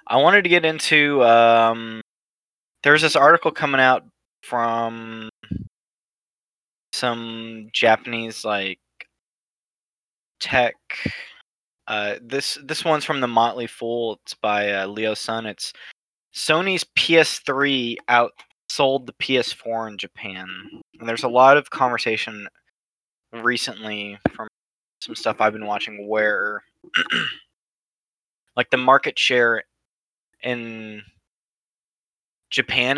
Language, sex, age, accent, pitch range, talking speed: English, male, 20-39, American, 110-130 Hz, 105 wpm